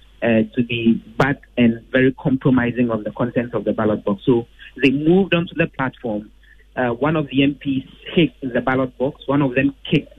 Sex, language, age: male, English, 30-49